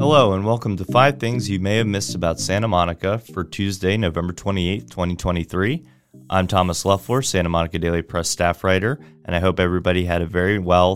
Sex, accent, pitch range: male, American, 90-110 Hz